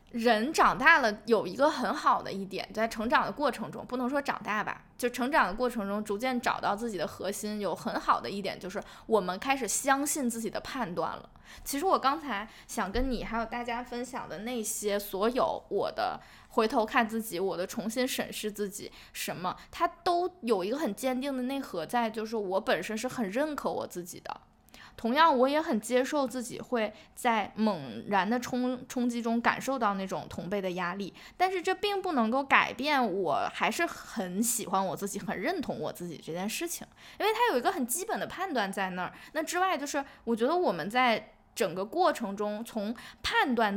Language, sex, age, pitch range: Chinese, female, 10-29, 210-270 Hz